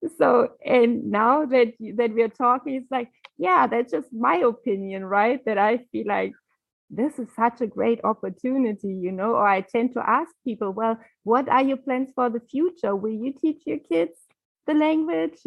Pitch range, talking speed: 210-260 Hz, 190 wpm